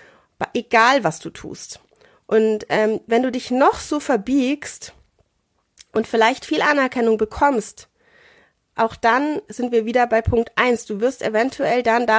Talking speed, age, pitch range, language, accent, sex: 150 wpm, 30-49, 205-255 Hz, German, German, female